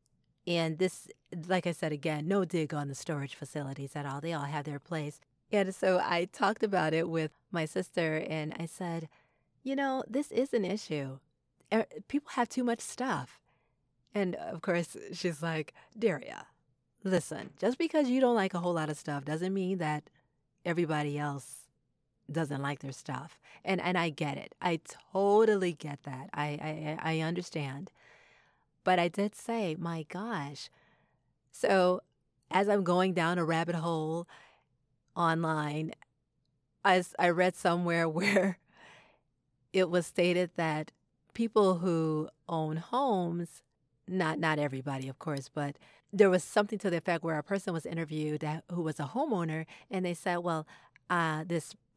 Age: 30-49